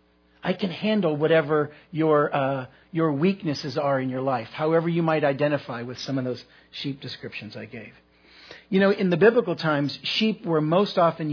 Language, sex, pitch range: English, male, 125-170 Hz